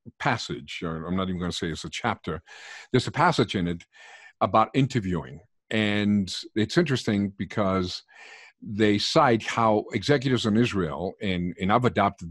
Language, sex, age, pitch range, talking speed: English, male, 50-69, 95-130 Hz, 150 wpm